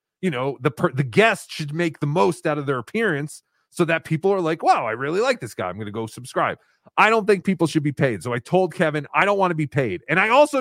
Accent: American